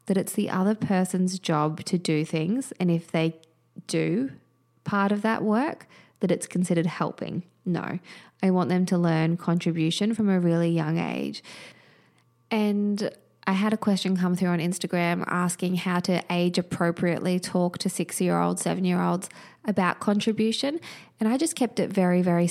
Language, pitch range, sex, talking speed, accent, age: English, 175-200 Hz, female, 160 wpm, Australian, 20-39